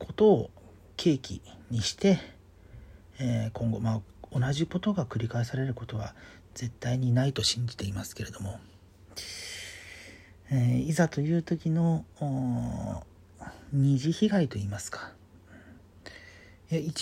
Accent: native